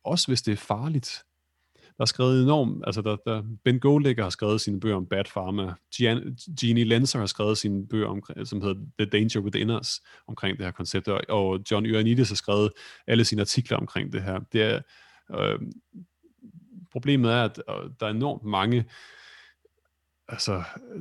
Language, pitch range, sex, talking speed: Danish, 100-125 Hz, male, 175 wpm